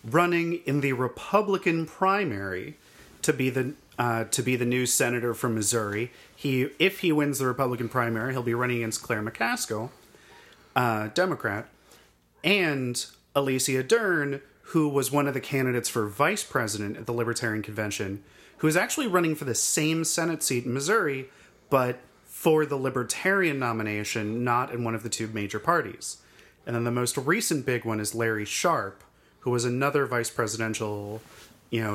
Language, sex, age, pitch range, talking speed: English, male, 30-49, 115-145 Hz, 165 wpm